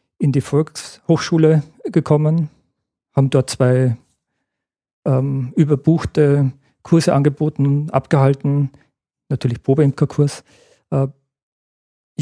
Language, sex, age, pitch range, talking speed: German, male, 40-59, 135-155 Hz, 75 wpm